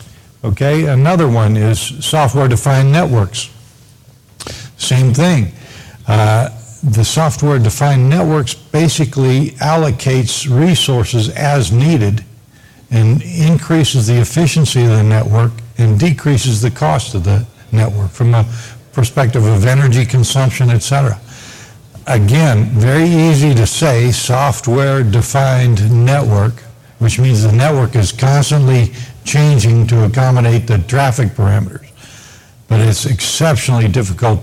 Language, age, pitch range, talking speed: English, 60-79, 110-135 Hz, 105 wpm